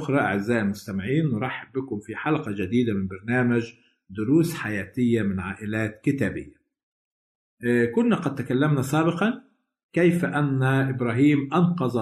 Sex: male